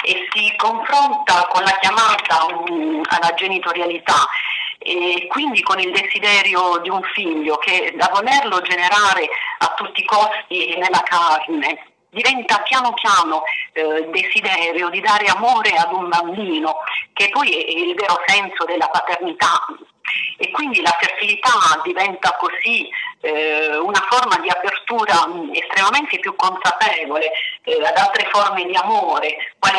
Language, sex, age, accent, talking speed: Italian, female, 40-59, native, 135 wpm